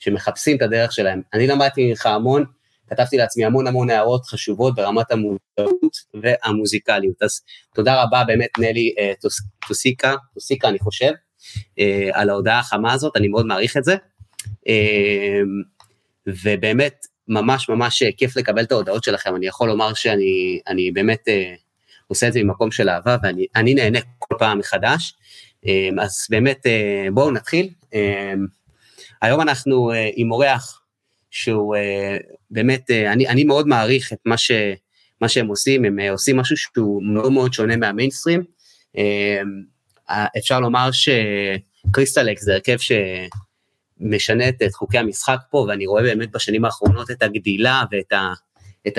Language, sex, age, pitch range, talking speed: Hebrew, male, 30-49, 100-130 Hz, 135 wpm